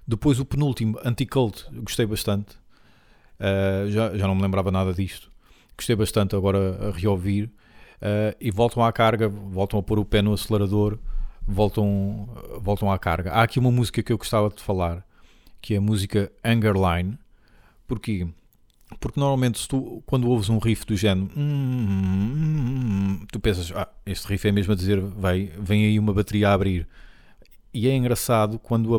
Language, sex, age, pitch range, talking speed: Portuguese, male, 40-59, 100-115 Hz, 170 wpm